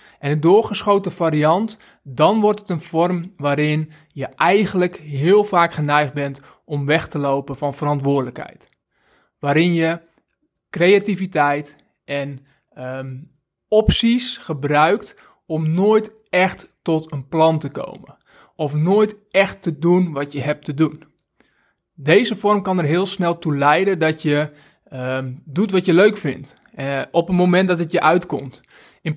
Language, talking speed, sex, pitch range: Dutch, 145 wpm, male, 150-185 Hz